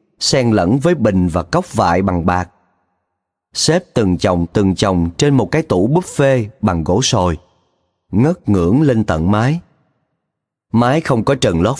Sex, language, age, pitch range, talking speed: male, Vietnamese, 30-49, 95-150 Hz, 165 wpm